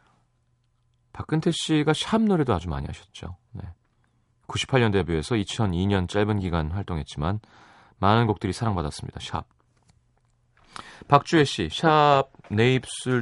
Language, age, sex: Korean, 30-49, male